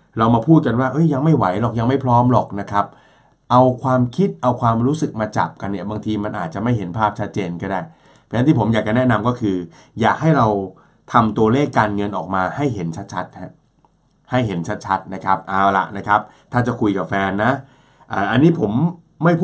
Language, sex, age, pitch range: Thai, male, 20-39, 100-140 Hz